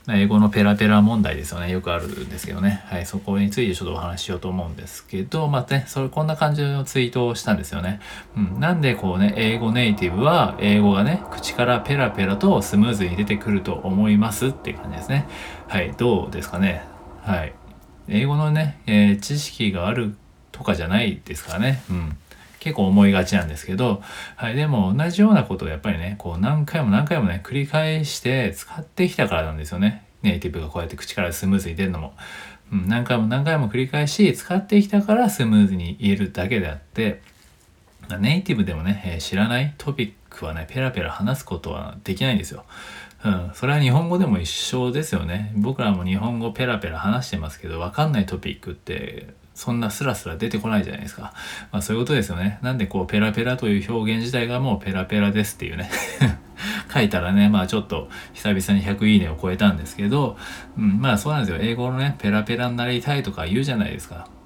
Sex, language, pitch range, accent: male, Japanese, 95-125 Hz, native